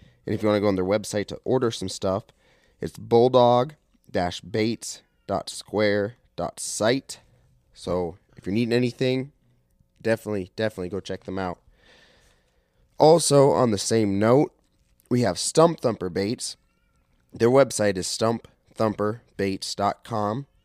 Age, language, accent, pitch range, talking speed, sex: 20-39, English, American, 95-115 Hz, 115 wpm, male